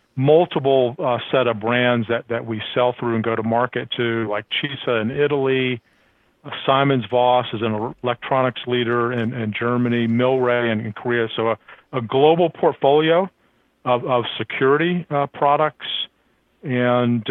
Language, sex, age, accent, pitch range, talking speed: English, male, 40-59, American, 115-140 Hz, 155 wpm